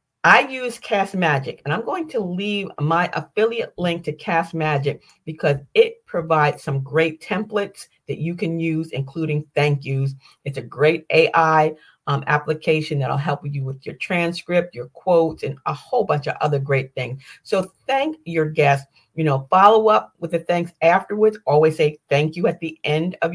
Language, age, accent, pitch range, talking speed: English, 40-59, American, 145-200 Hz, 180 wpm